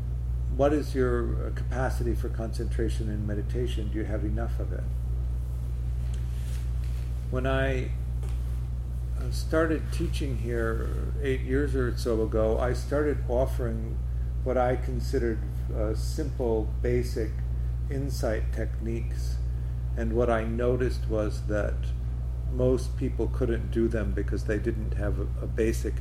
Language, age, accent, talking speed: English, 50-69, American, 120 wpm